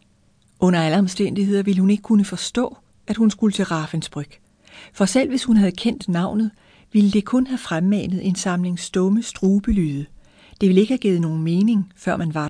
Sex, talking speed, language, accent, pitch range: female, 185 wpm, Danish, native, 145-205 Hz